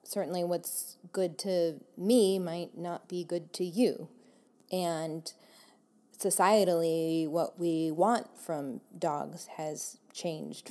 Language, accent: English, American